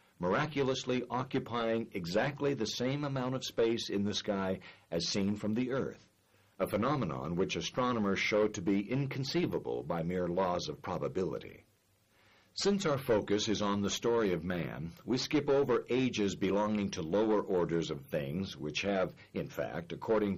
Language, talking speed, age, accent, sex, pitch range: English, 155 wpm, 60-79, American, male, 100-130 Hz